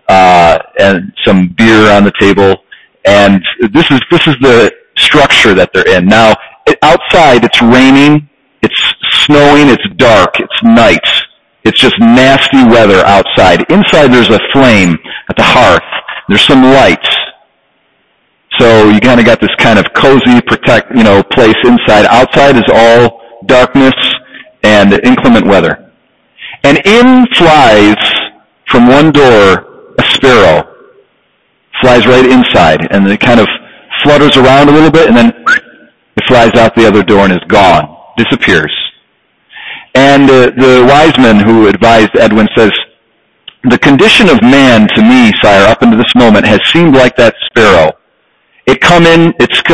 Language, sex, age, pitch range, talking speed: English, male, 40-59, 115-155 Hz, 150 wpm